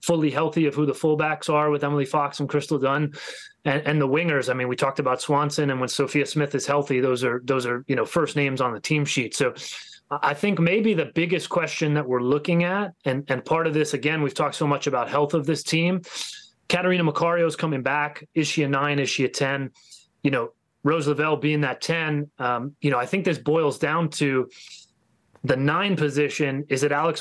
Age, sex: 30-49, male